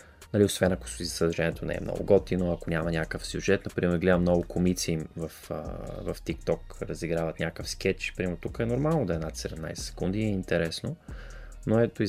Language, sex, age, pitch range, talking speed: Bulgarian, male, 20-39, 85-100 Hz, 180 wpm